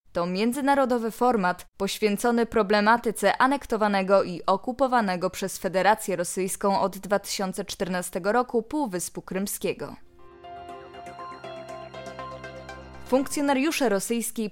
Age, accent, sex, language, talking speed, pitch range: 20-39, native, female, Polish, 75 wpm, 195-255 Hz